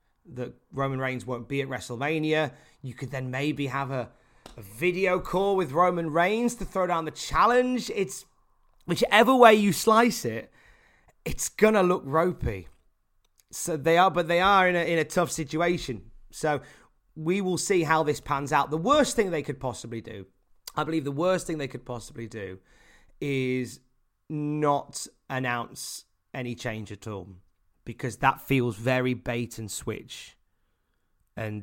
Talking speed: 165 wpm